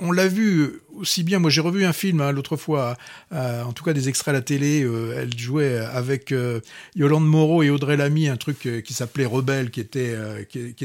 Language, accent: French, French